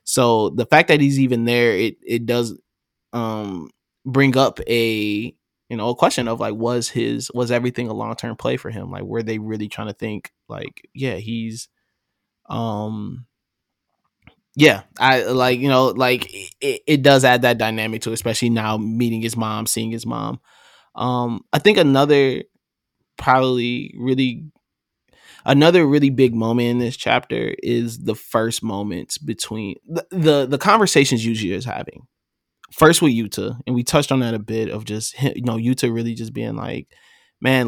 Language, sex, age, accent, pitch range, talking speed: English, male, 20-39, American, 115-140 Hz, 170 wpm